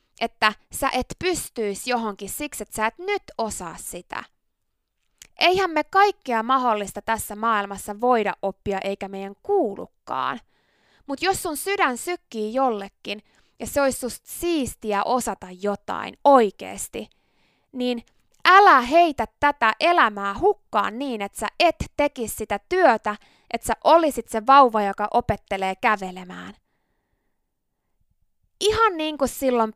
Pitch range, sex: 210-330 Hz, female